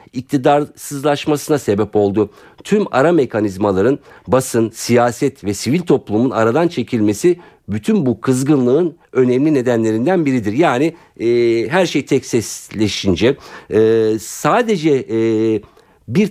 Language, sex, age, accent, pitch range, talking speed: Turkish, male, 50-69, native, 105-150 Hz, 100 wpm